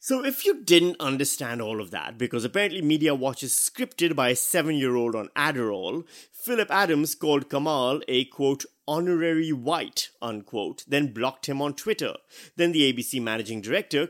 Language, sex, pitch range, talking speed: English, male, 120-180 Hz, 160 wpm